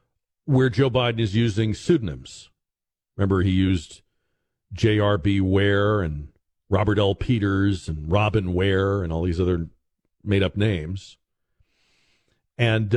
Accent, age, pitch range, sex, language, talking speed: American, 50-69, 95-130 Hz, male, English, 115 wpm